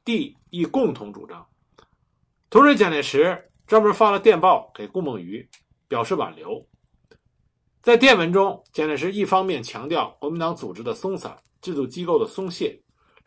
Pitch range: 150-235 Hz